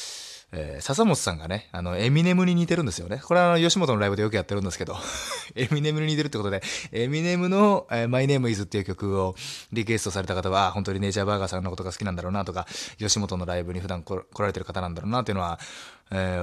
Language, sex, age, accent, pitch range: Japanese, male, 20-39, native, 90-135 Hz